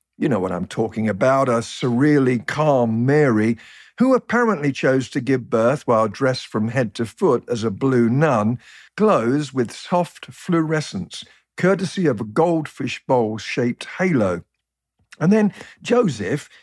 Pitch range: 115-160 Hz